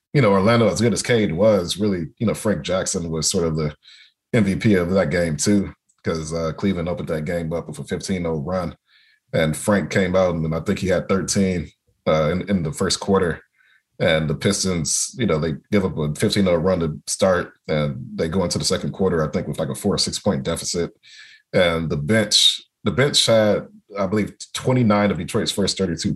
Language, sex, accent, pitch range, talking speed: English, male, American, 75-95 Hz, 205 wpm